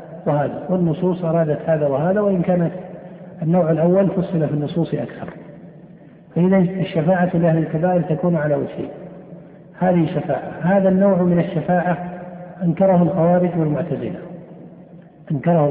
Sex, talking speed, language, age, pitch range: male, 115 wpm, Arabic, 50-69, 155-180 Hz